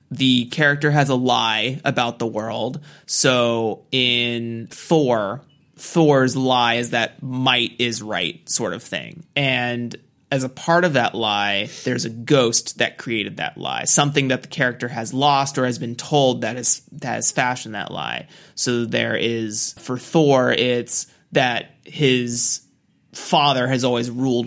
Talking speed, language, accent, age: 160 wpm, English, American, 30-49